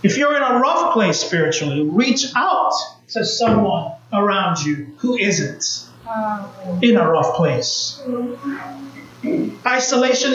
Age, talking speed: 30-49, 115 wpm